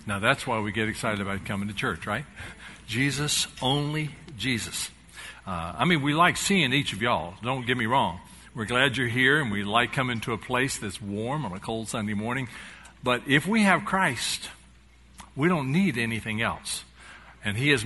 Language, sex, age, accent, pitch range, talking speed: English, male, 60-79, American, 110-145 Hz, 195 wpm